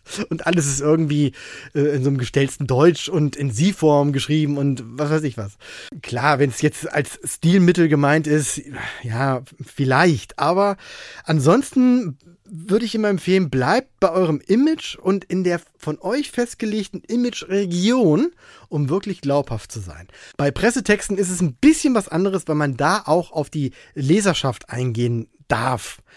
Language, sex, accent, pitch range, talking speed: German, male, German, 140-190 Hz, 155 wpm